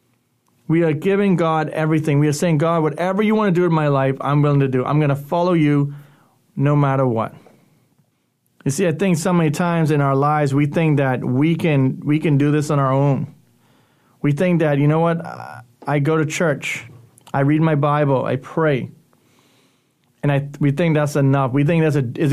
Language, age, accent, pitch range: English, 30-49, American, 135-160 Hz